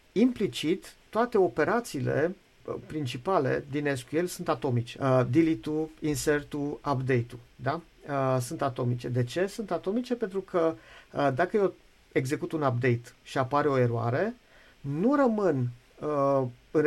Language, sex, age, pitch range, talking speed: Romanian, male, 50-69, 130-165 Hz, 130 wpm